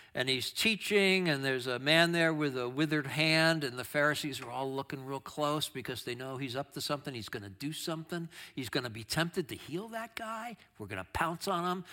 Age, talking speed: 60-79, 235 wpm